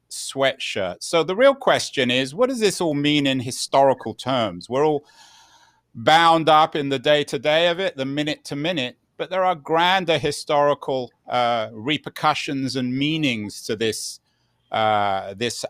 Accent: British